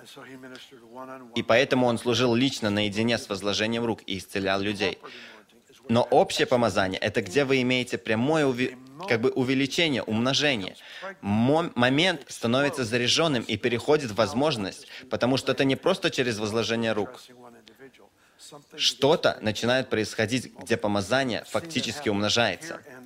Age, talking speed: 20-39, 115 wpm